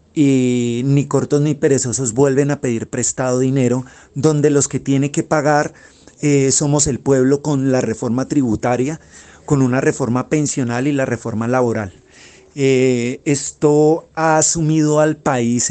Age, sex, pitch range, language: 30-49, male, 130-150 Hz, Spanish